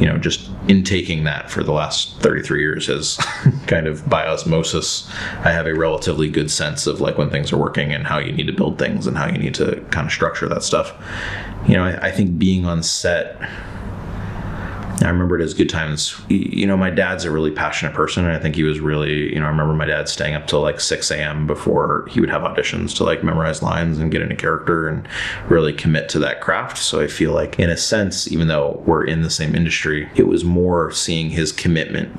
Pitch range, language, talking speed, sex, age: 80-95 Hz, English, 230 wpm, male, 30-49